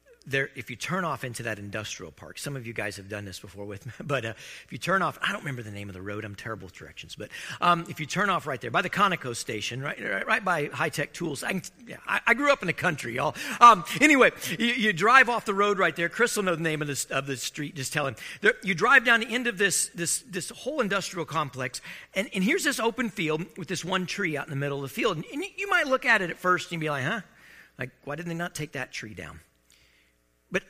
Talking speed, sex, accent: 285 wpm, male, American